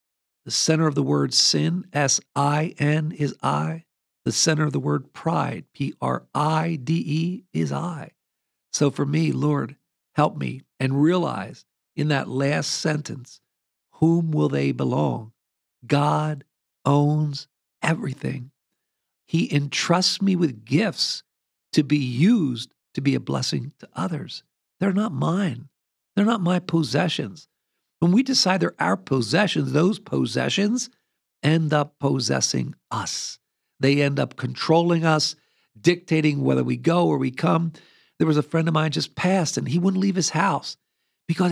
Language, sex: English, male